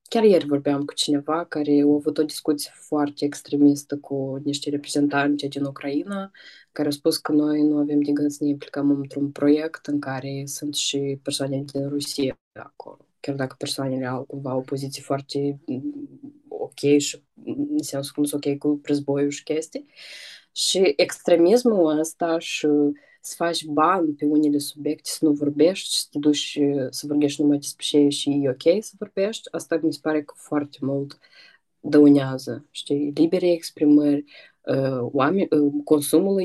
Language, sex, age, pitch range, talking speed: Romanian, female, 20-39, 140-155 Hz, 155 wpm